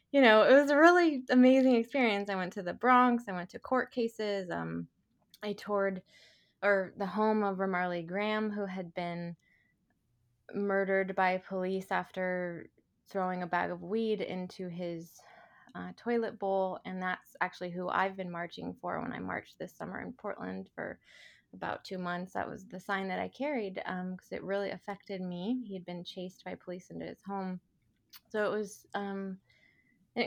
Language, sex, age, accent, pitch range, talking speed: English, female, 20-39, American, 180-215 Hz, 180 wpm